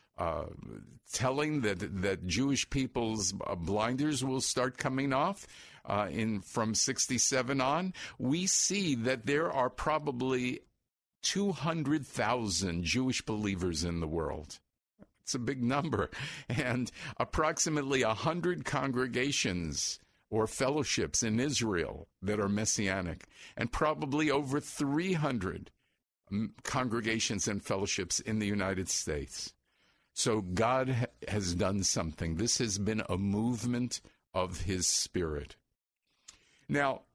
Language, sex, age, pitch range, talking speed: English, male, 50-69, 100-135 Hz, 110 wpm